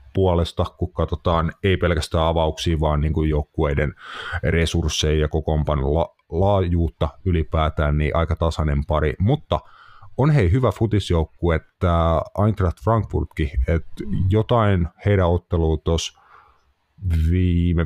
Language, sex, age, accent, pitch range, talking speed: Finnish, male, 30-49, native, 80-90 Hz, 110 wpm